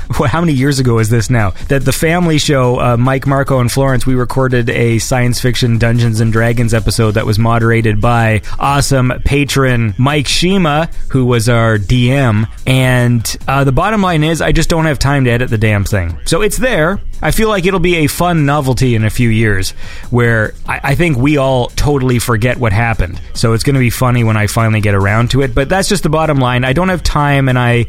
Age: 30-49